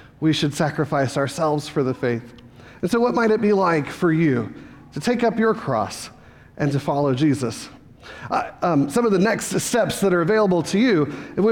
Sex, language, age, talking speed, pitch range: male, English, 40-59, 200 wpm, 160-225 Hz